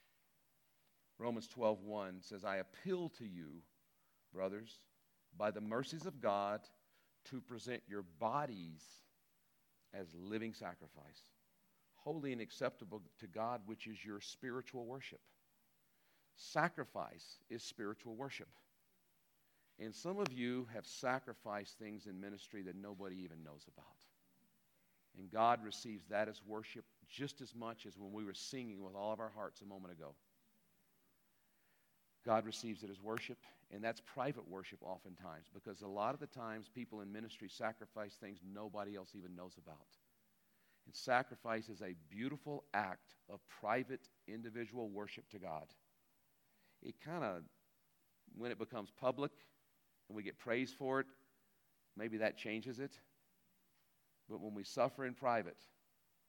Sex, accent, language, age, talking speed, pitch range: male, American, English, 50-69, 140 wpm, 100-120 Hz